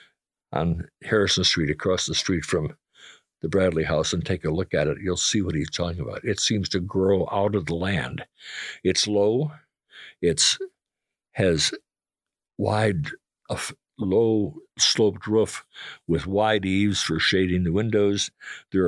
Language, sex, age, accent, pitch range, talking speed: English, male, 60-79, American, 90-105 Hz, 150 wpm